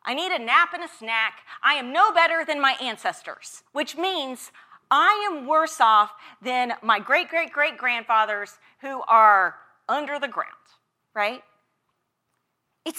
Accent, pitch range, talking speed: American, 250-340 Hz, 140 wpm